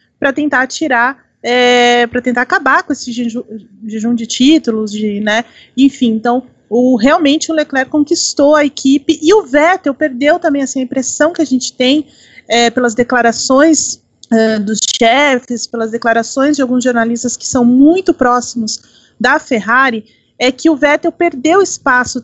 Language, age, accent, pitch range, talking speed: Portuguese, 30-49, Brazilian, 245-295 Hz, 160 wpm